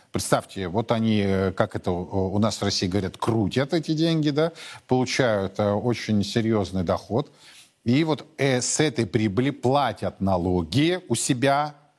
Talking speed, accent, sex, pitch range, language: 130 wpm, native, male, 100-140 Hz, Russian